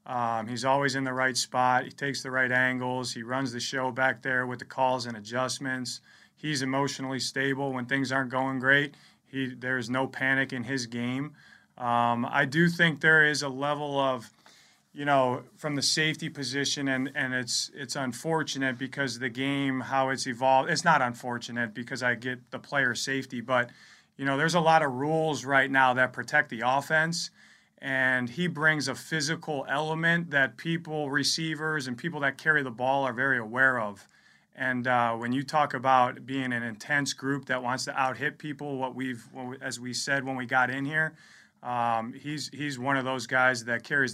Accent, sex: American, male